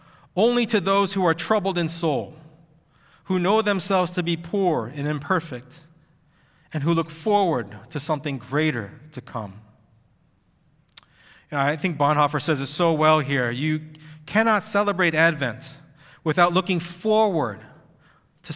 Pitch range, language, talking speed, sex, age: 130-175 Hz, English, 140 wpm, male, 30-49